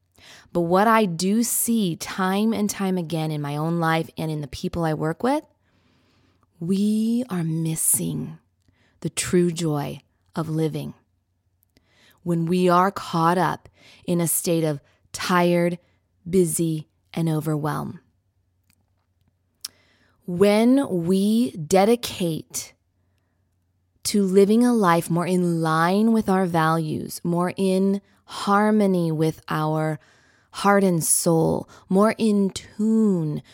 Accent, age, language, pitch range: American, 20-39, English, 160-225 Hz